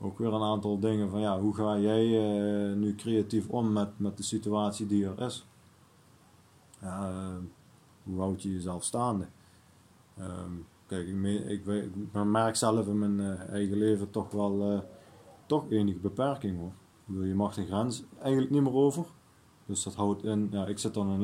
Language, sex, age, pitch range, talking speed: Dutch, male, 20-39, 95-110 Hz, 185 wpm